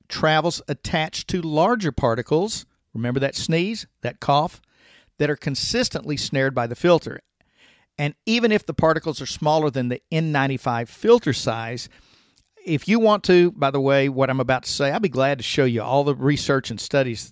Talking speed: 185 wpm